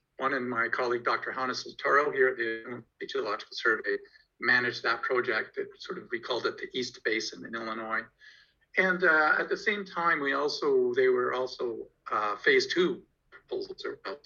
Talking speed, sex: 175 wpm, male